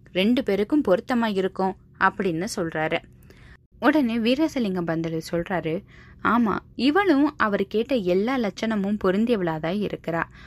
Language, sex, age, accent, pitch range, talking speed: Tamil, female, 20-39, native, 180-250 Hz, 105 wpm